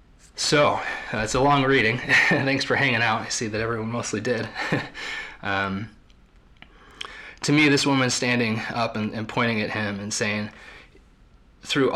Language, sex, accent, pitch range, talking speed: English, male, American, 100-125 Hz, 155 wpm